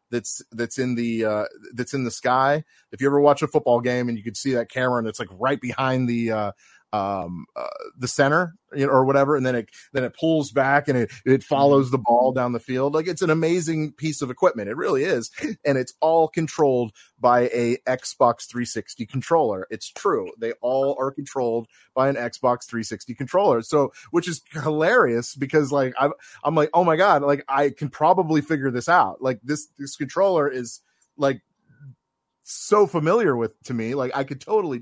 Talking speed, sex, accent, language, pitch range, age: 200 wpm, male, American, English, 125-160 Hz, 30-49